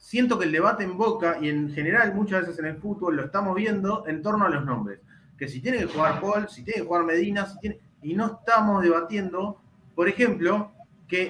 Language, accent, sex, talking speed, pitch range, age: Spanish, Argentinian, male, 225 wpm, 155-220 Hz, 30-49